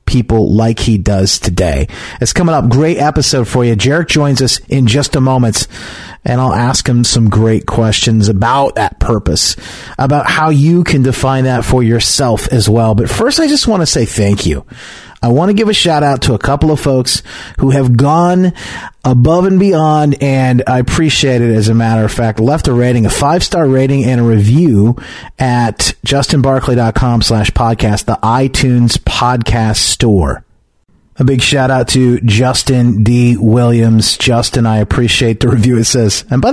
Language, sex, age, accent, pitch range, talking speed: English, male, 40-59, American, 105-135 Hz, 175 wpm